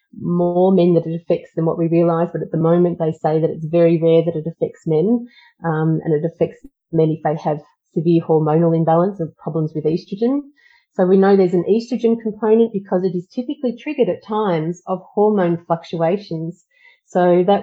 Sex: female